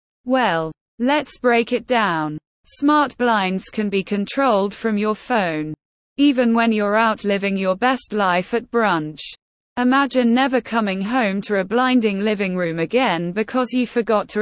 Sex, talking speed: female, 155 wpm